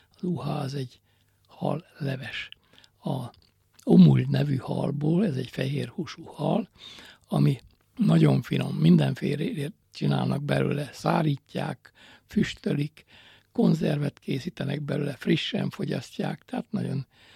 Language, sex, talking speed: Hungarian, male, 95 wpm